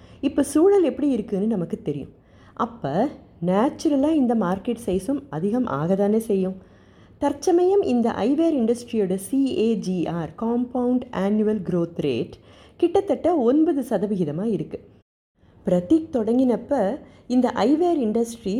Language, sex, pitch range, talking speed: Tamil, female, 190-260 Hz, 105 wpm